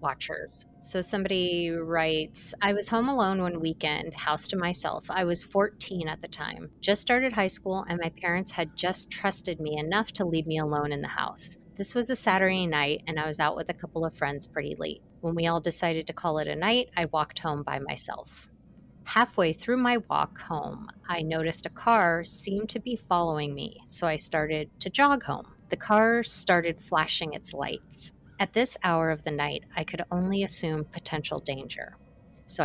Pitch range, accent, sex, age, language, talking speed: 160-195 Hz, American, female, 30-49, English, 195 wpm